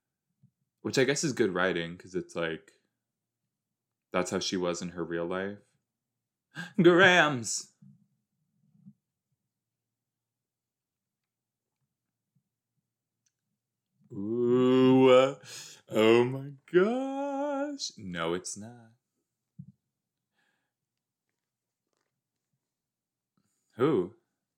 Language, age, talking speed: English, 20-39, 65 wpm